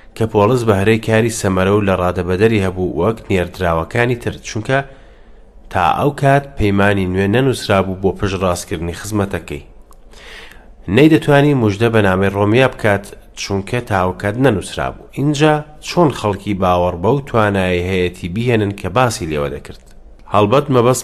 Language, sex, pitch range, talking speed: English, male, 95-120 Hz, 55 wpm